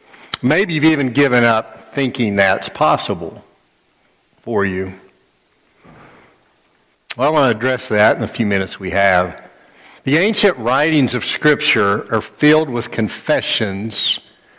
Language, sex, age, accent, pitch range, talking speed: English, male, 60-79, American, 95-125 Hz, 130 wpm